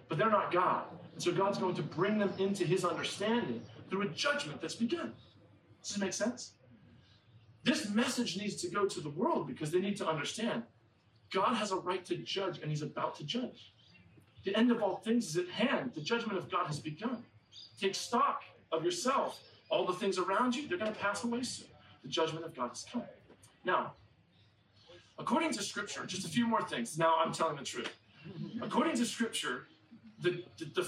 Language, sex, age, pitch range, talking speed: English, male, 40-59, 155-205 Hz, 200 wpm